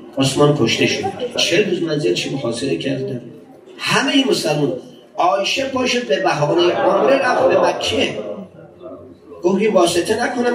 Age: 40-59